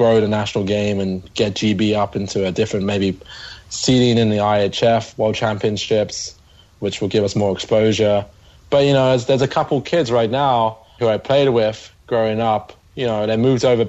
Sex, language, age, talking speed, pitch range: male, English, 20-39, 190 wpm, 100-115 Hz